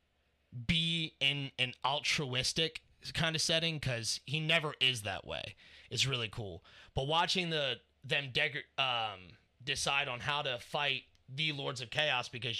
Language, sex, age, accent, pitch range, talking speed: English, male, 30-49, American, 110-140 Hz, 150 wpm